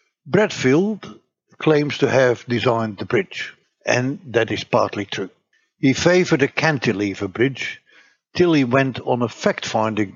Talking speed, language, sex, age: 135 wpm, English, male, 60-79